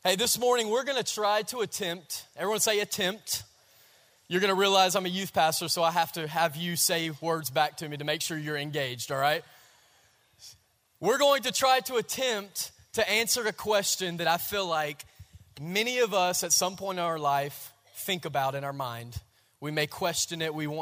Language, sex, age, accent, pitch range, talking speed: English, male, 20-39, American, 145-210 Hz, 195 wpm